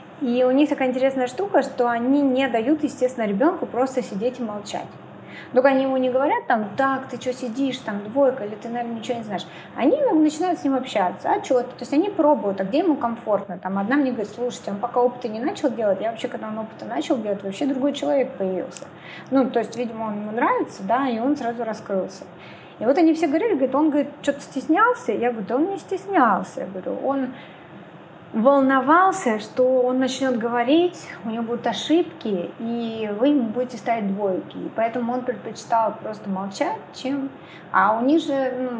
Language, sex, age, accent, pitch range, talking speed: Russian, female, 20-39, native, 220-285 Hz, 200 wpm